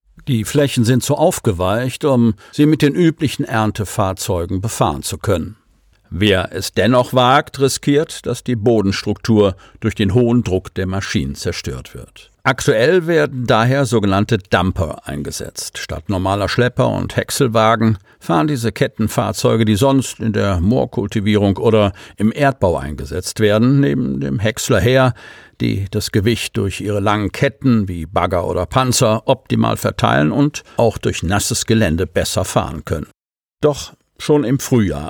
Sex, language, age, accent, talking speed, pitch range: male, German, 50-69, German, 140 wpm, 100-130 Hz